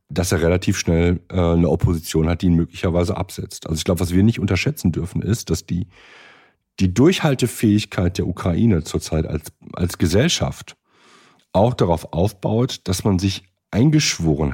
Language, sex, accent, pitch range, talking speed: German, male, German, 85-115 Hz, 155 wpm